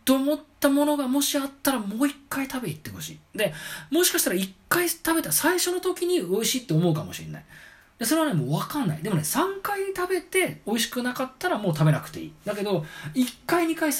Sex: male